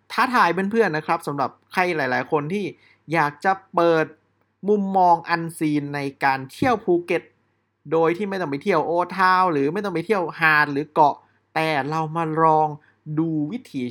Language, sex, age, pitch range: Thai, male, 20-39, 130-180 Hz